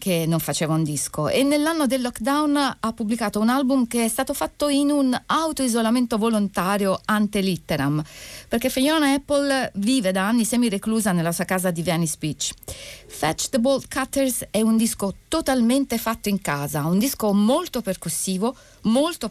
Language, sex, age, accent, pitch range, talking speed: Italian, female, 40-59, native, 185-250 Hz, 170 wpm